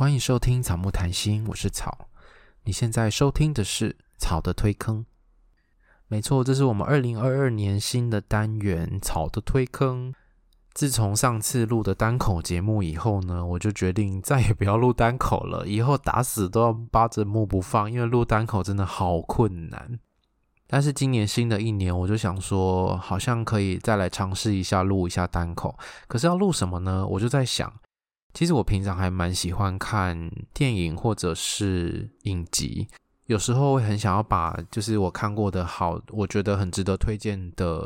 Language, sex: Chinese, male